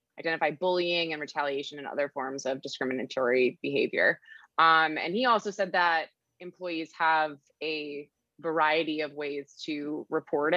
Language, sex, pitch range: English, female, 145-175 Hz